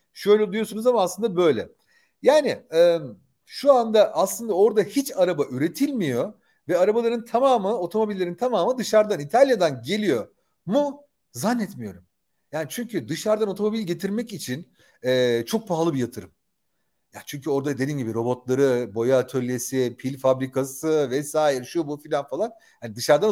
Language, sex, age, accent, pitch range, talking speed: Turkish, male, 40-59, native, 140-215 Hz, 135 wpm